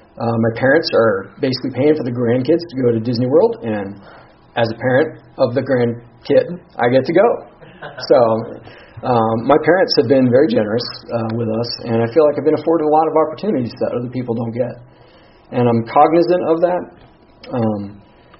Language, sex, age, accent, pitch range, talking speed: English, male, 40-59, American, 115-150 Hz, 190 wpm